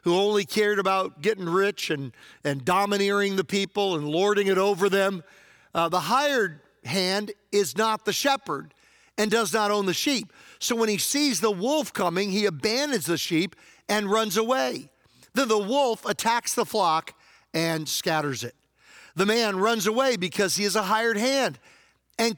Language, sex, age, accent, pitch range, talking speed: English, male, 50-69, American, 175-230 Hz, 170 wpm